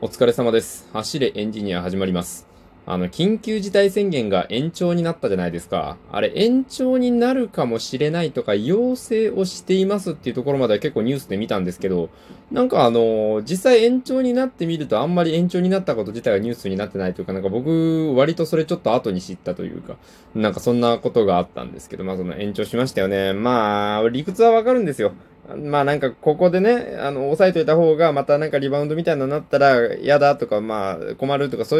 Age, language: 20-39, Japanese